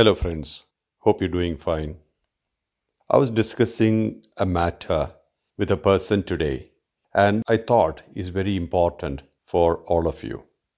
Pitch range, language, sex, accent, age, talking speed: 95-115 Hz, English, male, Indian, 50-69, 140 wpm